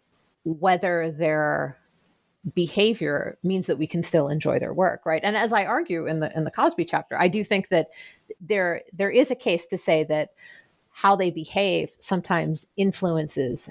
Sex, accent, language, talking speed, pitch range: female, American, English, 170 wpm, 165-210 Hz